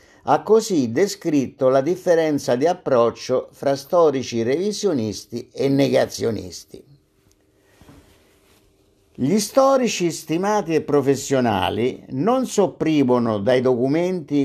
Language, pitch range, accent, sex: Italian, 125-160 Hz, native, male